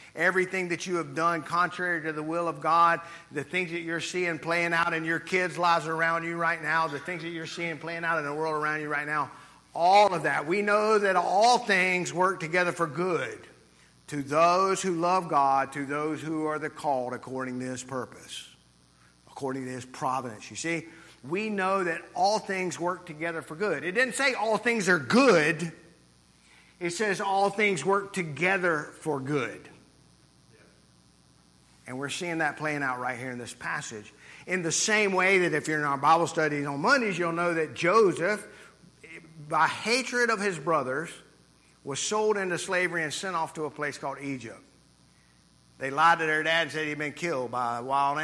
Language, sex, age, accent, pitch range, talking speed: English, male, 50-69, American, 130-175 Hz, 195 wpm